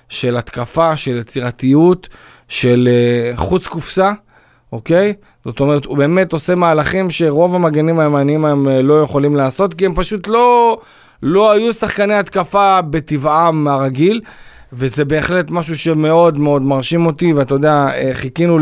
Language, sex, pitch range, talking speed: Hebrew, male, 135-165 Hz, 140 wpm